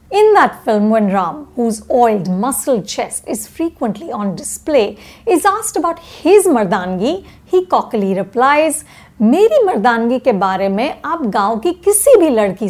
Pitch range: 210-300 Hz